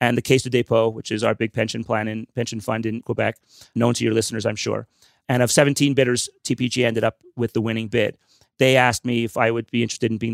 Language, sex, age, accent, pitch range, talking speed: English, male, 30-49, American, 115-135 Hz, 255 wpm